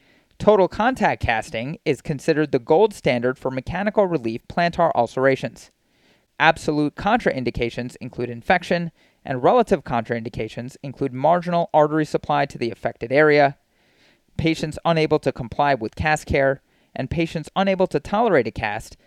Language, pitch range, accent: English, 125-165 Hz, American